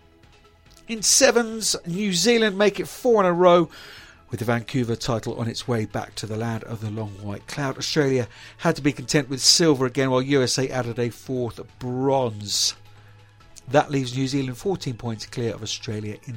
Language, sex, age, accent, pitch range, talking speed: English, male, 50-69, British, 110-165 Hz, 185 wpm